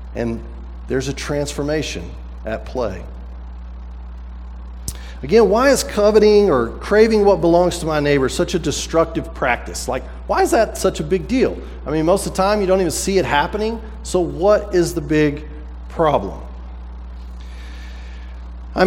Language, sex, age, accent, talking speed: English, male, 40-59, American, 155 wpm